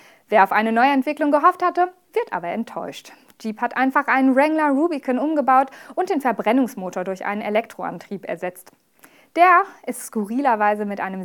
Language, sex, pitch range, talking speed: German, female, 205-285 Hz, 150 wpm